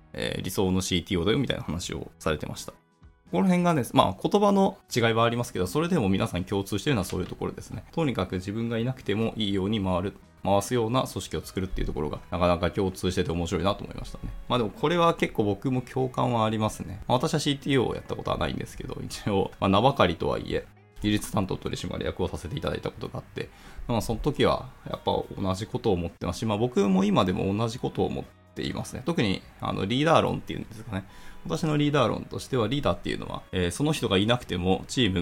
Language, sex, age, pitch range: Japanese, male, 20-39, 95-125 Hz